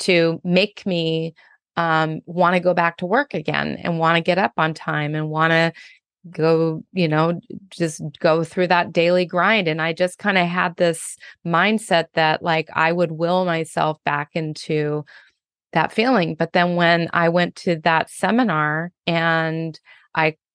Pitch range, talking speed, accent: 160-185 Hz, 165 wpm, American